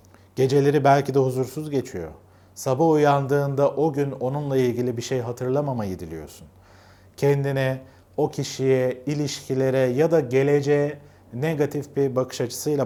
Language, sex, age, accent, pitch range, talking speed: Turkish, male, 40-59, native, 95-135 Hz, 120 wpm